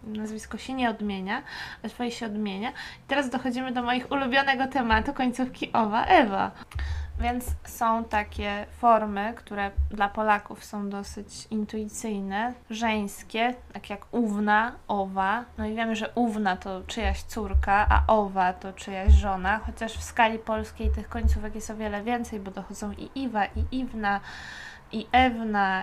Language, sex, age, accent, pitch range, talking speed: Polish, female, 20-39, native, 200-235 Hz, 145 wpm